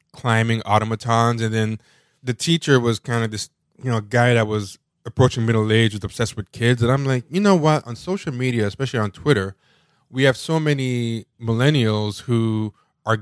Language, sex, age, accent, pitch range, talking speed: English, male, 20-39, American, 110-130 Hz, 185 wpm